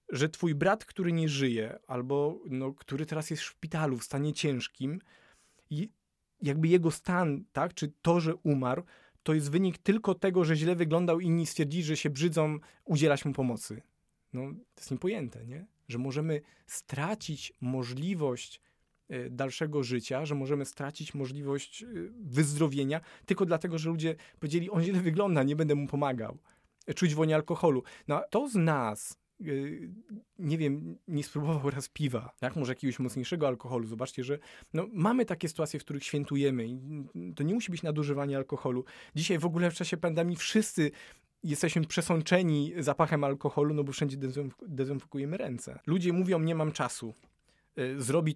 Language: Polish